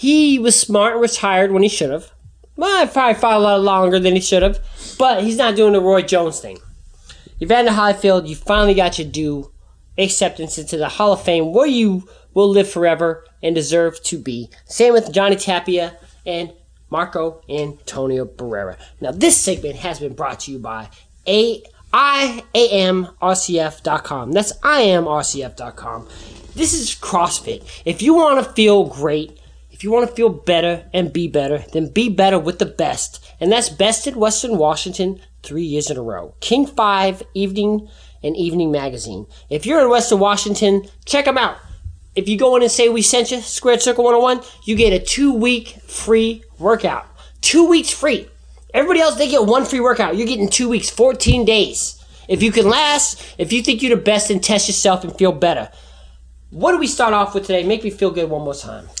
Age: 20-39